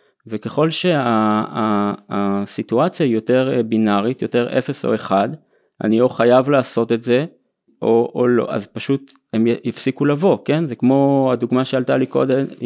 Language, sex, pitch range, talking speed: Hebrew, male, 110-140 Hz, 140 wpm